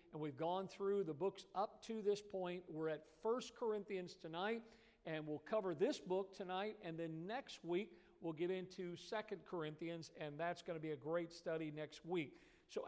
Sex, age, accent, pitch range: male, 50-69, American, 165-200 Hz